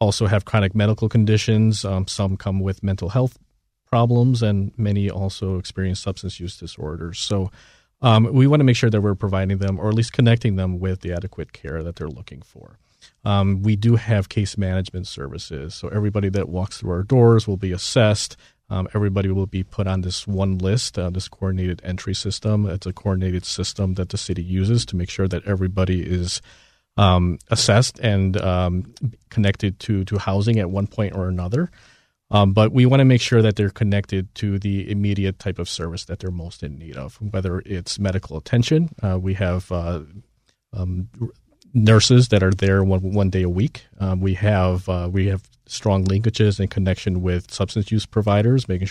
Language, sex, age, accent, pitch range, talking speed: English, male, 40-59, American, 95-110 Hz, 195 wpm